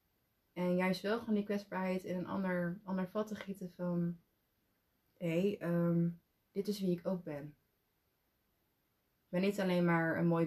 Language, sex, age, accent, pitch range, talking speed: Dutch, female, 20-39, Dutch, 155-205 Hz, 160 wpm